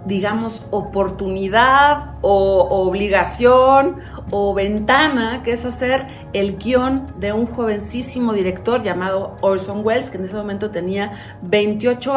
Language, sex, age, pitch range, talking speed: Spanish, female, 40-59, 185-235 Hz, 120 wpm